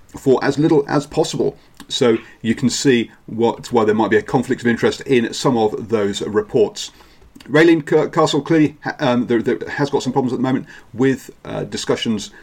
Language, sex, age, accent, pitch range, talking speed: English, male, 40-59, British, 115-145 Hz, 190 wpm